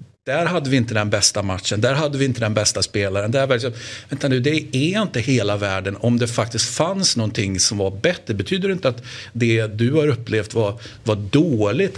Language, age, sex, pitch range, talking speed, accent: Swedish, 60-79, male, 115-145 Hz, 210 wpm, native